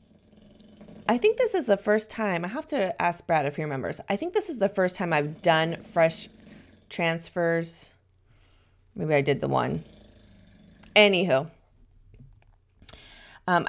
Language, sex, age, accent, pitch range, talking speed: English, female, 30-49, American, 145-205 Hz, 145 wpm